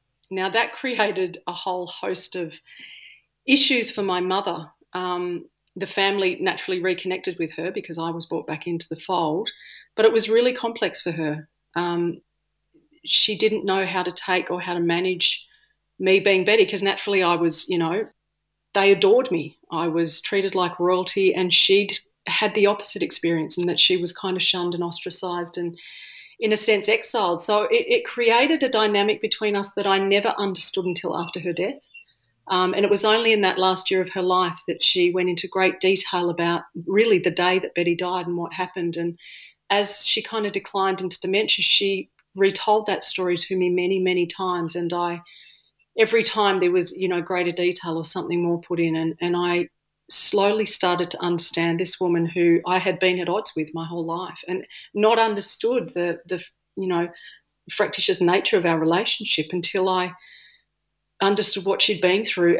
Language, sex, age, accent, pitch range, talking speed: English, female, 40-59, Australian, 175-200 Hz, 190 wpm